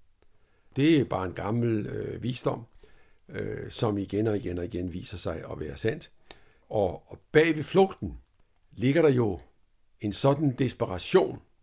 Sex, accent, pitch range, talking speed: male, native, 90-115 Hz, 155 wpm